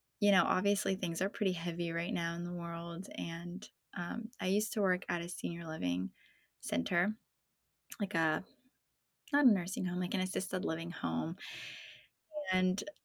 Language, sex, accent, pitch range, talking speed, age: English, female, American, 180-205 Hz, 160 wpm, 20-39